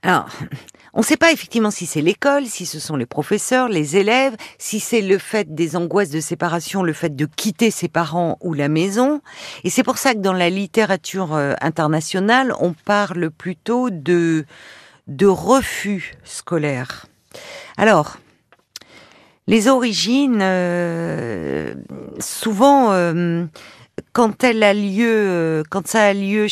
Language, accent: French, French